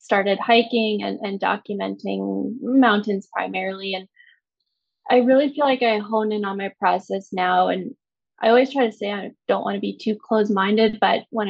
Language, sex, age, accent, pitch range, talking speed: English, female, 10-29, American, 200-235 Hz, 175 wpm